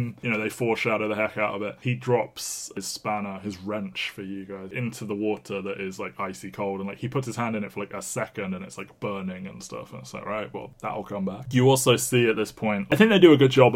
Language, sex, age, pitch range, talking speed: English, male, 20-39, 100-120 Hz, 285 wpm